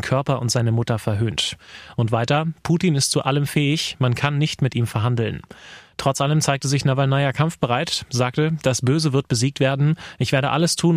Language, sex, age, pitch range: German, male, 30-49, 120-145 Hz